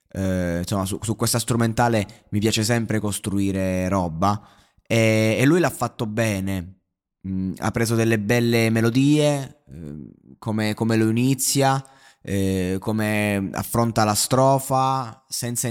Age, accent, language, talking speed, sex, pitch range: 20-39, native, Italian, 130 wpm, male, 110-130 Hz